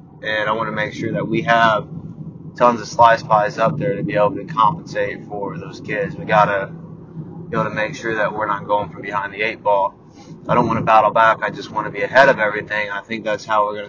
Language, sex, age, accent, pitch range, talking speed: English, male, 20-39, American, 105-130 Hz, 260 wpm